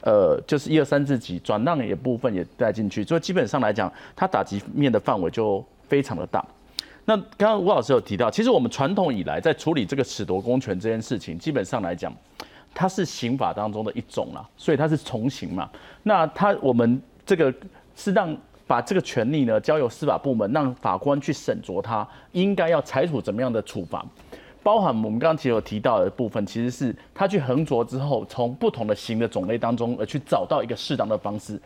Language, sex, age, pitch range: Chinese, male, 30-49, 110-165 Hz